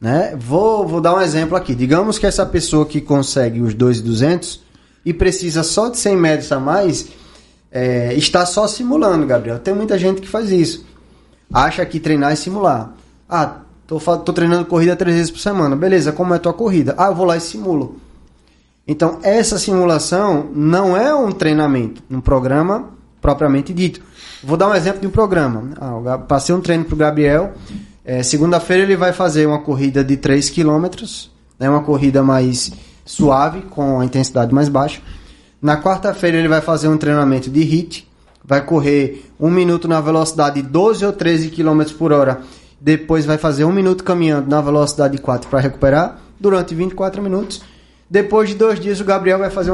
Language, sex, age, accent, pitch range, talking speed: Portuguese, male, 20-39, Brazilian, 140-185 Hz, 180 wpm